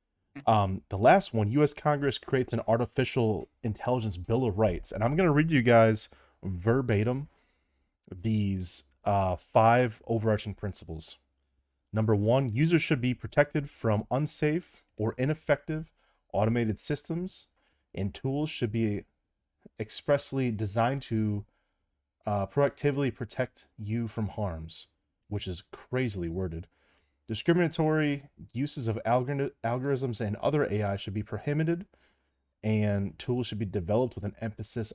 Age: 30-49